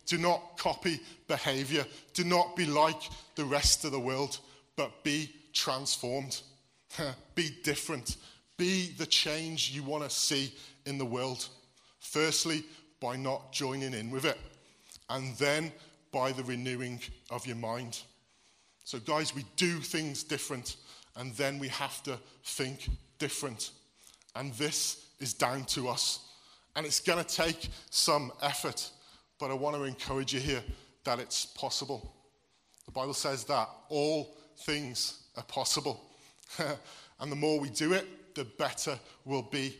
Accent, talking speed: British, 145 wpm